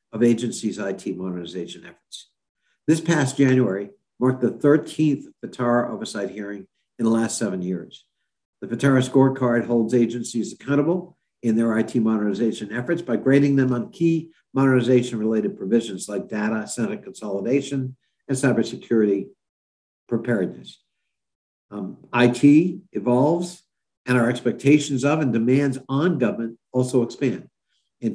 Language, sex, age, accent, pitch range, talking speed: English, male, 60-79, American, 110-135 Hz, 125 wpm